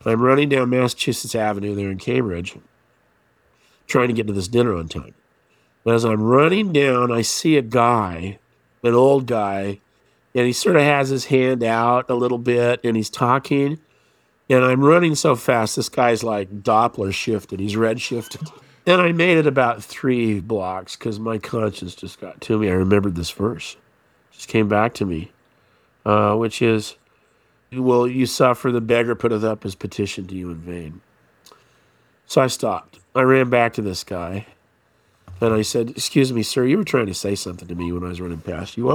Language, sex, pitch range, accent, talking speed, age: English, male, 105-130 Hz, American, 195 wpm, 50-69